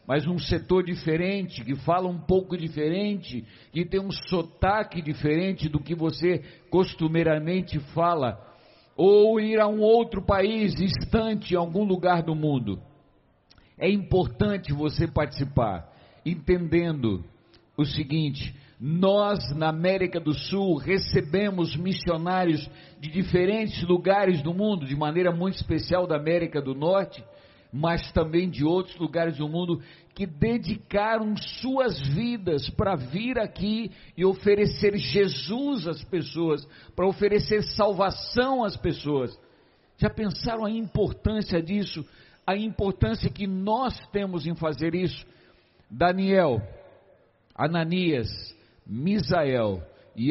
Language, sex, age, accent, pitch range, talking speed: Portuguese, male, 60-79, Brazilian, 150-195 Hz, 115 wpm